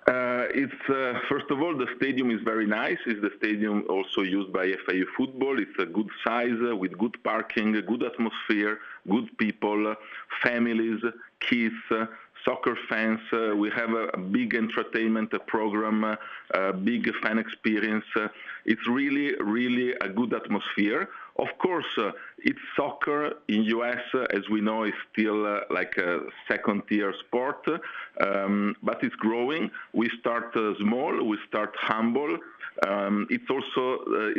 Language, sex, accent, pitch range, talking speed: English, male, Italian, 105-120 Hz, 160 wpm